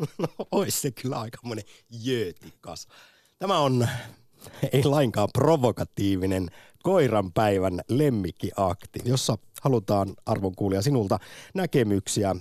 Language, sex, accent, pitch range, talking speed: Finnish, male, native, 95-130 Hz, 80 wpm